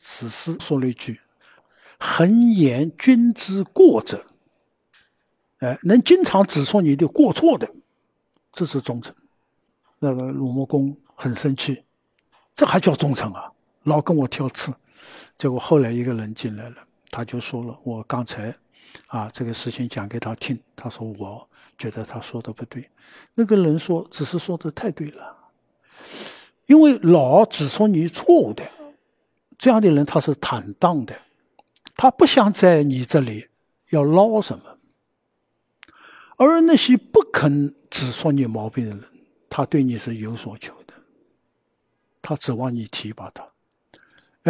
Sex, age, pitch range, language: male, 60-79, 120-180 Hz, Chinese